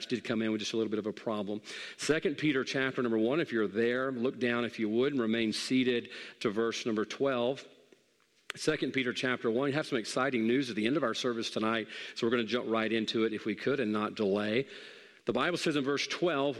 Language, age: English, 40-59